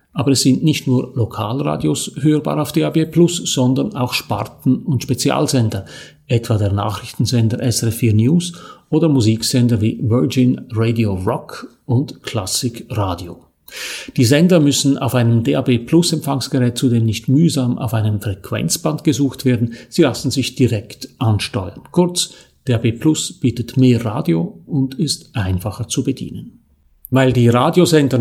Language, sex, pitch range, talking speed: German, male, 115-140 Hz, 130 wpm